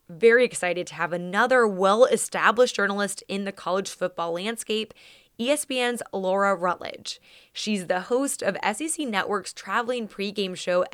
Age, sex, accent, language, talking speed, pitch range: 20-39, female, American, English, 130 wpm, 180-230 Hz